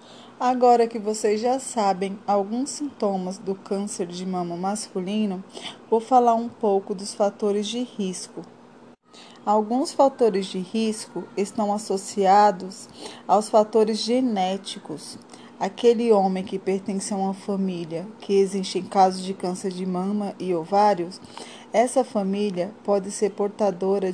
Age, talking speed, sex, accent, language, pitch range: 20-39, 125 wpm, female, Brazilian, Portuguese, 195-235 Hz